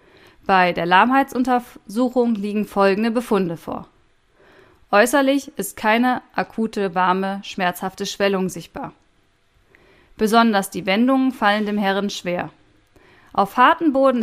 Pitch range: 185-255 Hz